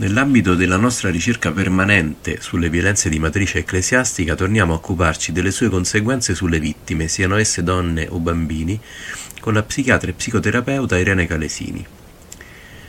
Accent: native